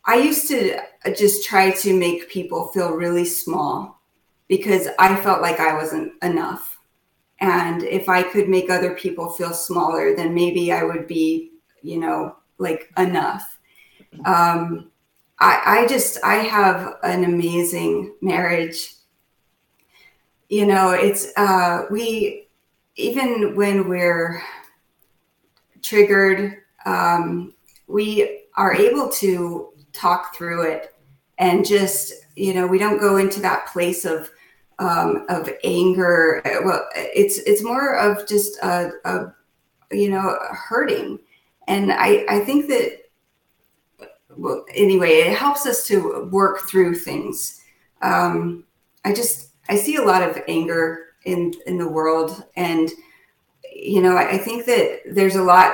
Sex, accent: female, American